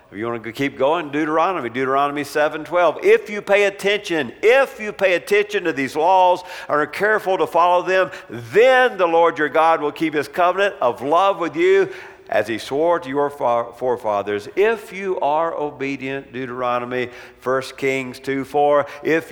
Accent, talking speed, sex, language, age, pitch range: American, 175 wpm, male, English, 50-69, 140-185 Hz